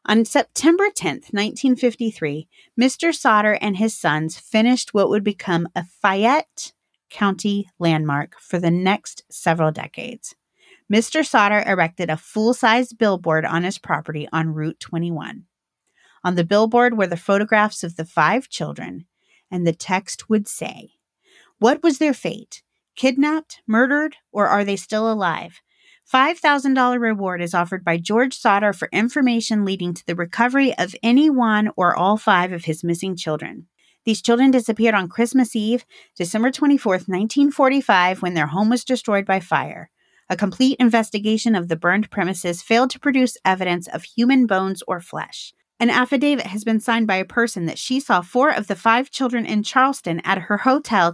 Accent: American